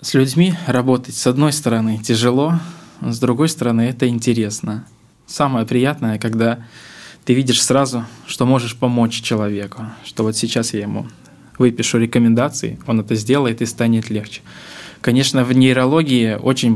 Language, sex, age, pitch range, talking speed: Russian, male, 20-39, 110-125 Hz, 140 wpm